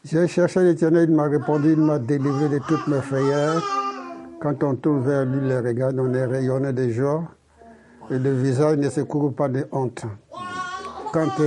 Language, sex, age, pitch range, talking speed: French, male, 60-79, 140-200 Hz, 185 wpm